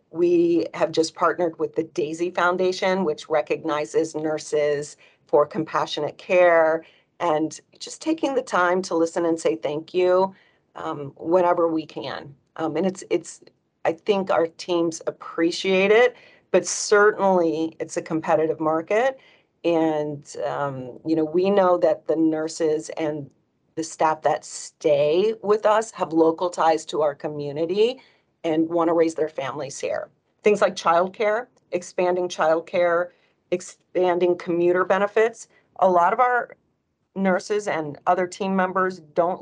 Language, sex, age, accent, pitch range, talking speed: English, female, 40-59, American, 155-190 Hz, 140 wpm